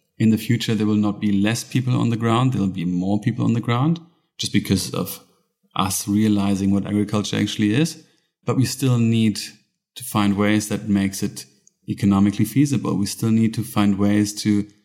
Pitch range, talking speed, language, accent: 100-115 Hz, 195 wpm, English, German